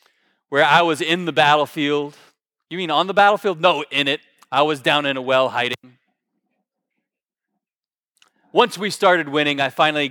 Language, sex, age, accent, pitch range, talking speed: English, male, 30-49, American, 135-160 Hz, 160 wpm